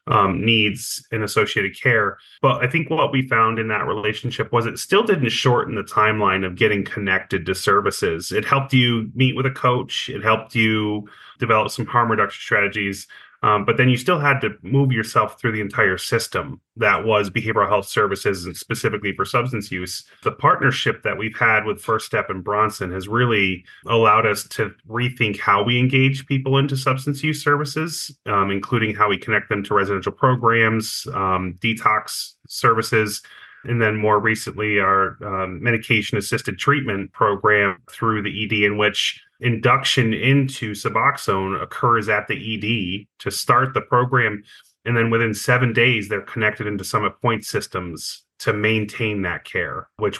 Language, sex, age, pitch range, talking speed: English, male, 30-49, 100-125 Hz, 170 wpm